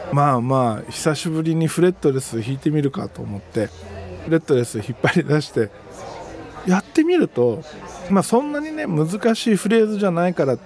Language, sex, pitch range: Japanese, male, 125-185 Hz